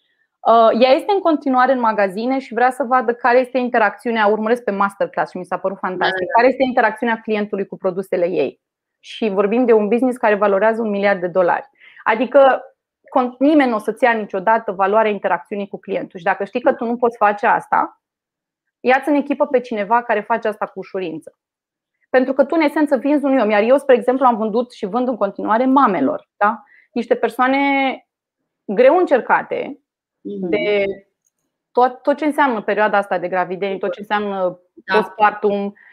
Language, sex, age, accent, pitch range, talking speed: Romanian, female, 20-39, native, 205-265 Hz, 180 wpm